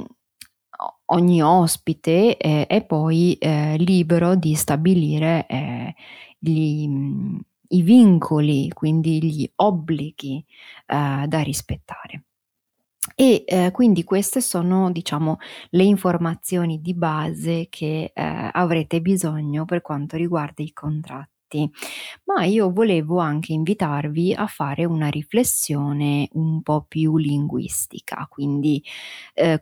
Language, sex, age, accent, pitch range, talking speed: Italian, female, 30-49, native, 150-185 Hz, 105 wpm